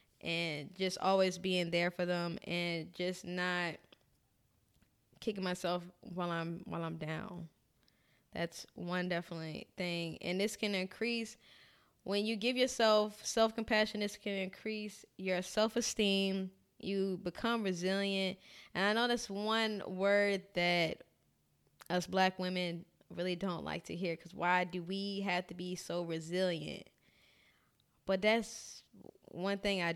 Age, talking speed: 10-29, 135 wpm